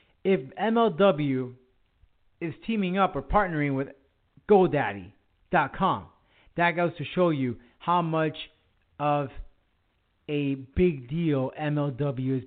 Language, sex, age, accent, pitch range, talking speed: English, male, 30-49, American, 125-165 Hz, 105 wpm